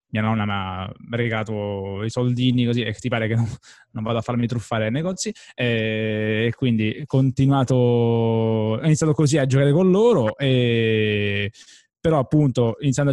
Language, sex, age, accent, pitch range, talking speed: Italian, male, 20-39, native, 110-135 Hz, 150 wpm